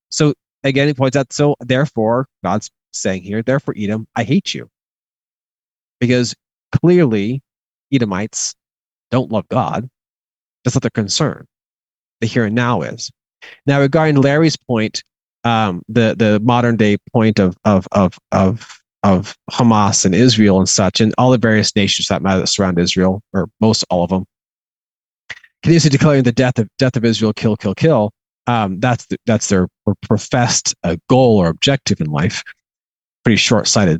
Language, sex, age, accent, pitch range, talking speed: English, male, 30-49, American, 105-130 Hz, 165 wpm